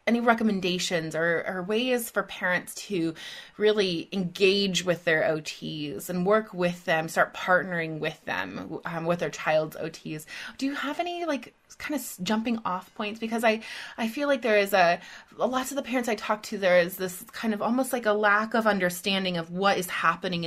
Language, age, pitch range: English, 20-39, 170-215 Hz